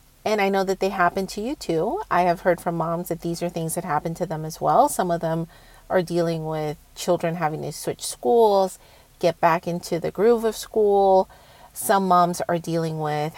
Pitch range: 170-200 Hz